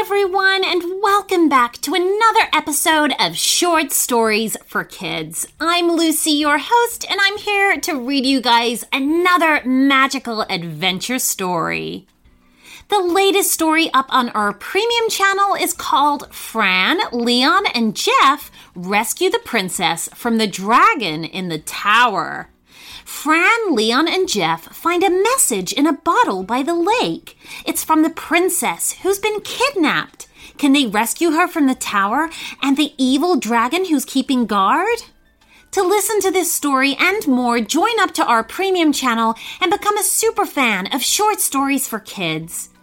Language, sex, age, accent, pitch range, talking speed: English, female, 30-49, American, 230-375 Hz, 150 wpm